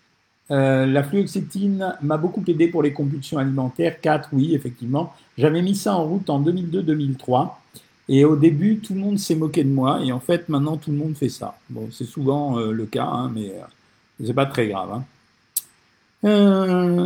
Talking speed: 190 wpm